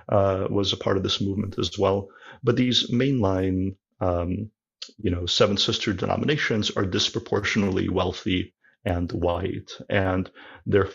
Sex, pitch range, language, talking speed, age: male, 90-105 Hz, English, 135 wpm, 40-59